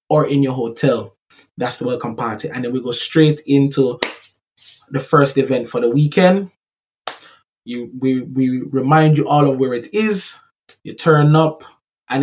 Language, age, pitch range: English, 20-39, 130-155 Hz